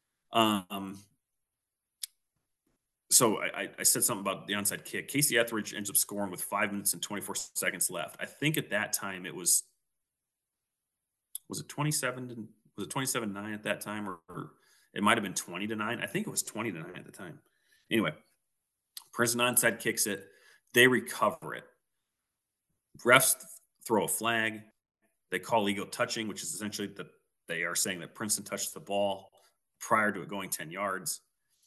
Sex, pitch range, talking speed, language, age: male, 100-115 Hz, 175 wpm, English, 30-49